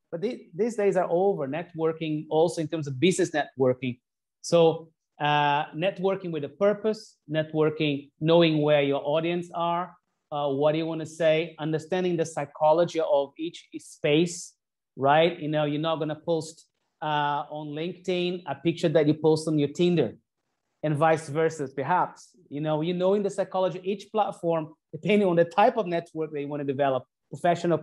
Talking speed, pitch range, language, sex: 180 wpm, 150-175 Hz, English, male